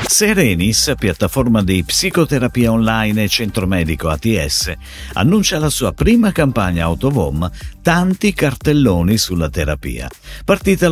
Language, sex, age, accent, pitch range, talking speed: Italian, male, 50-69, native, 85-140 Hz, 110 wpm